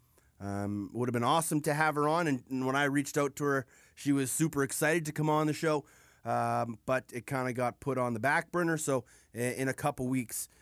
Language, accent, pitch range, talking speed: English, American, 120-150 Hz, 245 wpm